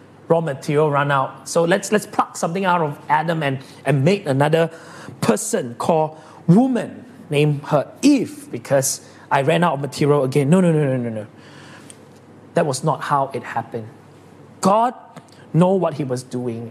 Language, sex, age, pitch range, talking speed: English, male, 30-49, 150-220 Hz, 170 wpm